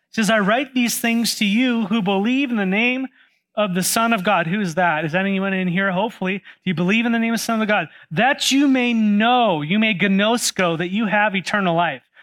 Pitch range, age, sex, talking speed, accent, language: 175-225 Hz, 30-49, male, 245 wpm, American, English